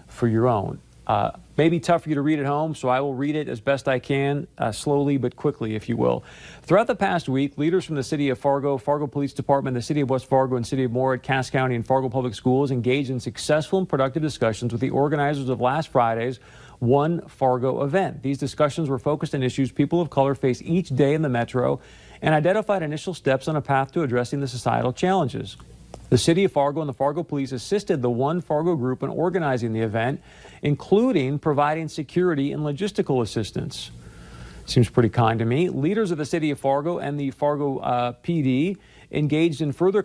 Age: 40-59